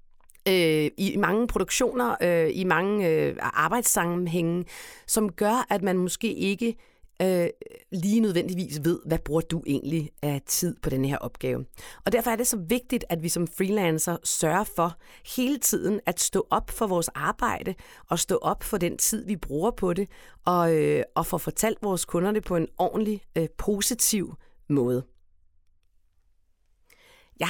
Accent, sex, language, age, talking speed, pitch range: native, female, Danish, 40-59, 150 wpm, 155-205 Hz